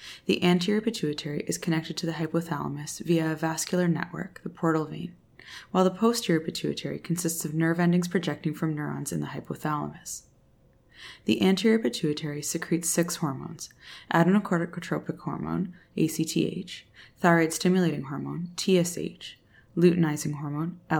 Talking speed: 125 wpm